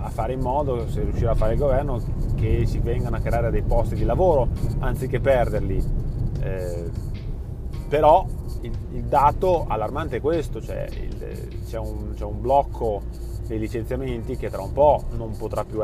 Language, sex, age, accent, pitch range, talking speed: Italian, male, 30-49, native, 110-130 Hz, 170 wpm